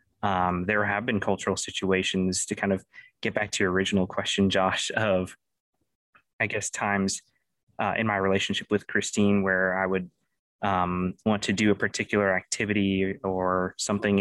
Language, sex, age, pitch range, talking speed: English, male, 20-39, 95-100 Hz, 160 wpm